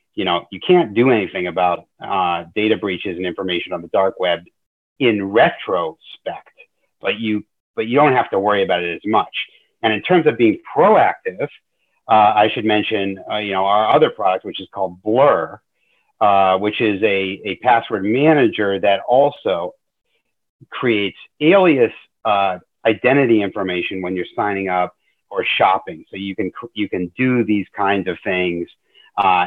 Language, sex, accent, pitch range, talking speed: English, male, American, 95-125 Hz, 160 wpm